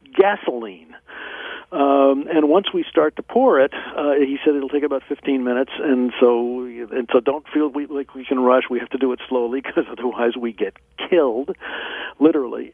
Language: English